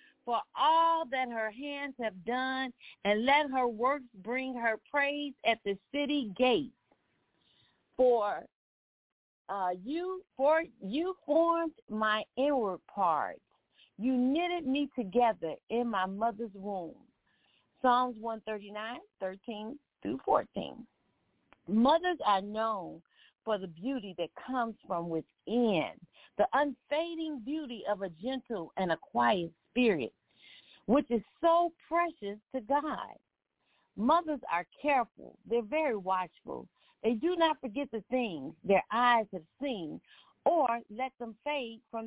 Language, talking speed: English, 125 wpm